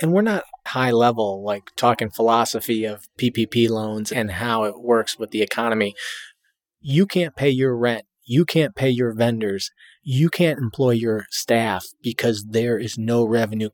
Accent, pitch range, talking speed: American, 110-145 Hz, 165 wpm